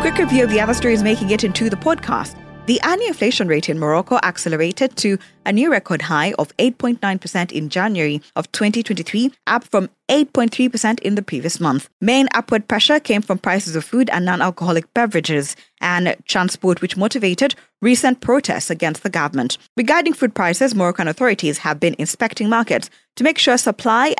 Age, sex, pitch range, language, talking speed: 20-39, female, 170-230 Hz, English, 170 wpm